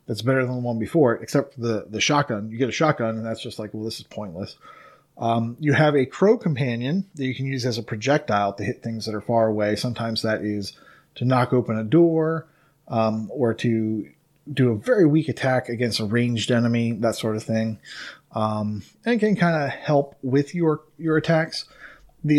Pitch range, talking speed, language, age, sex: 115-145 Hz, 210 wpm, English, 30-49, male